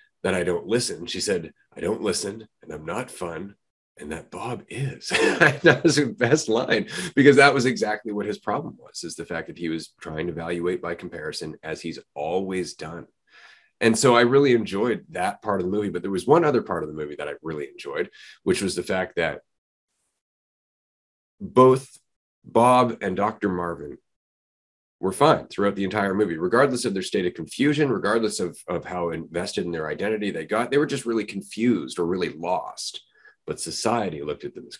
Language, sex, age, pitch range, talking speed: English, male, 30-49, 90-135 Hz, 195 wpm